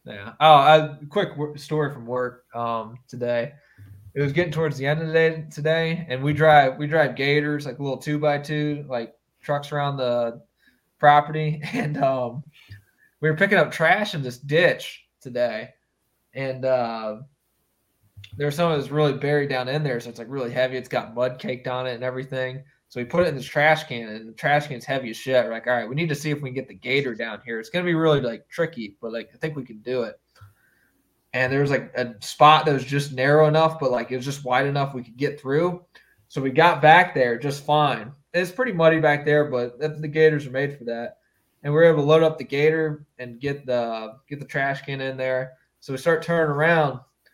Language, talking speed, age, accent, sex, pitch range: English, 230 wpm, 20-39, American, male, 125-155 Hz